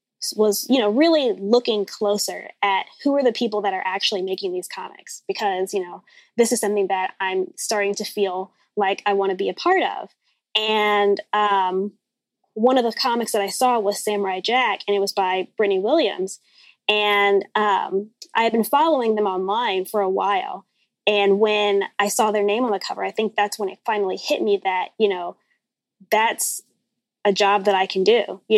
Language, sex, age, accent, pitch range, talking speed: English, female, 20-39, American, 200-235 Hz, 195 wpm